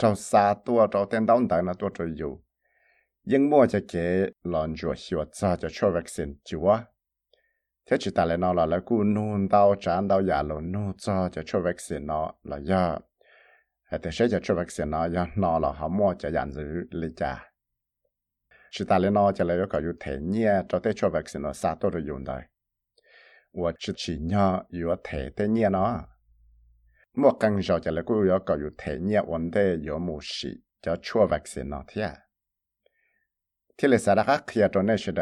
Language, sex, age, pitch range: English, male, 60-79, 85-105 Hz